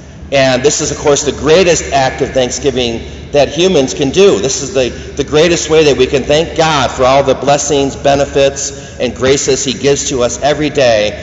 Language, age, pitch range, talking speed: English, 50-69, 115-145 Hz, 205 wpm